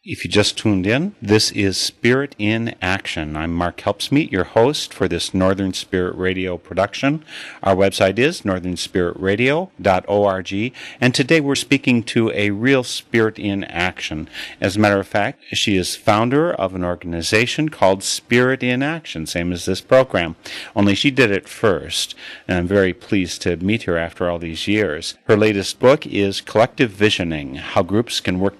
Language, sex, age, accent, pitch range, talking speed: English, male, 40-59, American, 95-125 Hz, 170 wpm